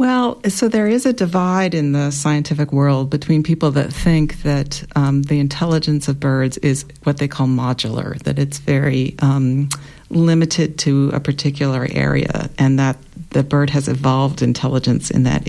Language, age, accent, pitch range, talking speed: English, 50-69, American, 140-170 Hz, 165 wpm